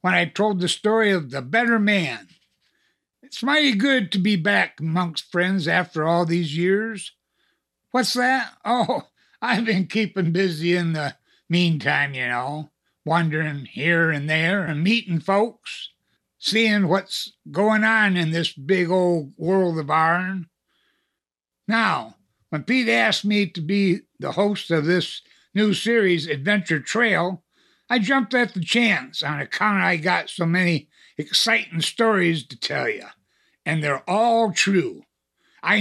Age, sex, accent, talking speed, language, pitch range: 60-79, male, American, 145 wpm, English, 165-220 Hz